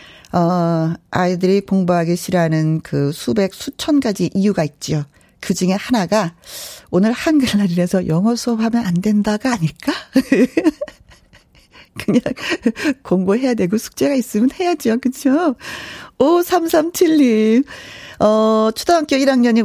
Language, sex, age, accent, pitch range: Korean, female, 40-59, native, 180-270 Hz